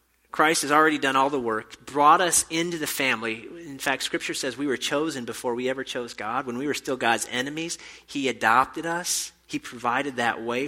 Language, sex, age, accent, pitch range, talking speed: English, male, 30-49, American, 115-145 Hz, 210 wpm